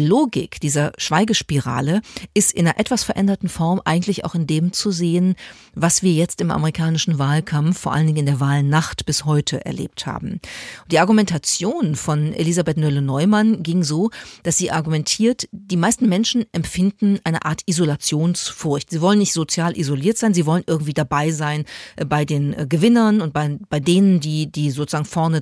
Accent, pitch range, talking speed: German, 155-195 Hz, 165 wpm